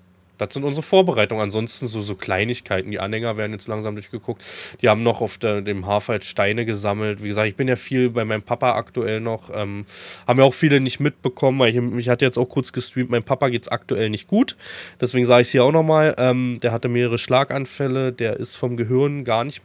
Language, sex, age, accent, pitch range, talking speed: German, male, 20-39, German, 105-125 Hz, 230 wpm